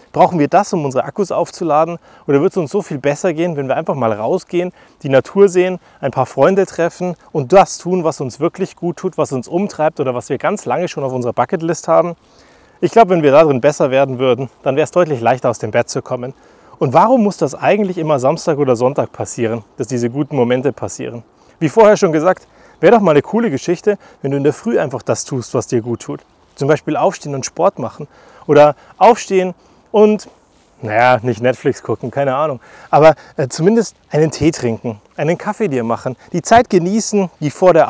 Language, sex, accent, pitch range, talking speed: German, male, German, 130-185 Hz, 210 wpm